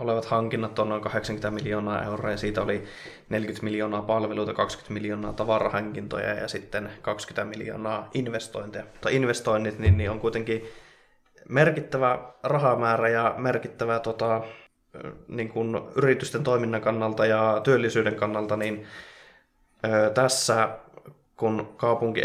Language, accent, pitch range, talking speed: Finnish, native, 105-115 Hz, 120 wpm